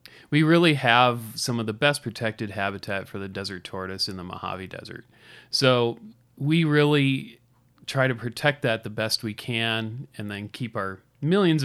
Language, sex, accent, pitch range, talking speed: English, male, American, 105-140 Hz, 170 wpm